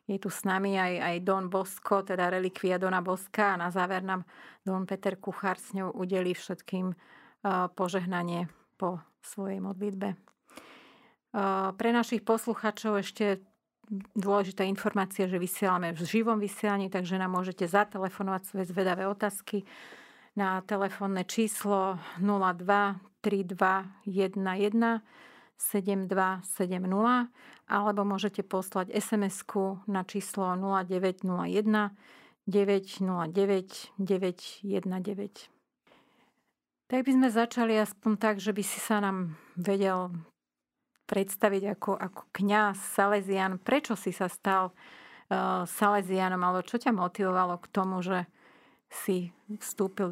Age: 40-59